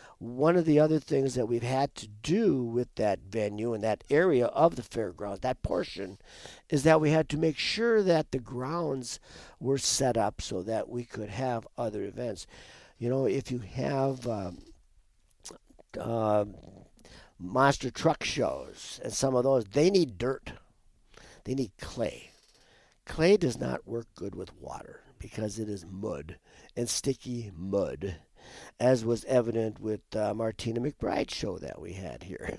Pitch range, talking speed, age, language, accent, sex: 105-135 Hz, 160 wpm, 50-69, English, American, male